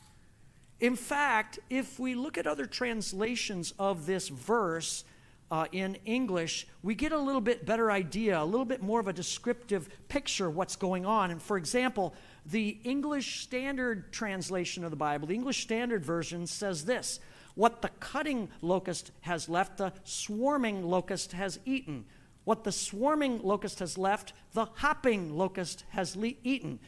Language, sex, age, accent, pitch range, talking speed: English, male, 50-69, American, 190-275 Hz, 160 wpm